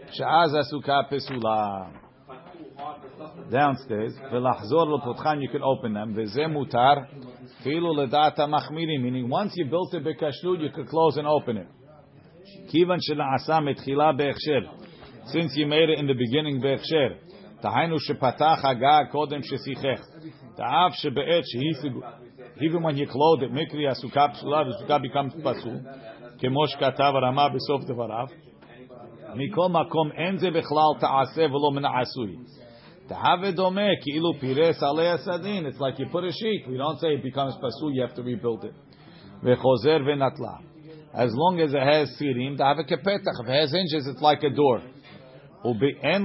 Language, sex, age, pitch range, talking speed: English, male, 50-69, 130-155 Hz, 85 wpm